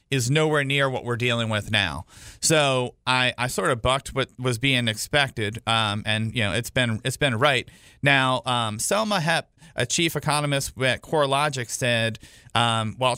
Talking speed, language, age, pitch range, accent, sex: 180 wpm, English, 40-59, 120-145 Hz, American, male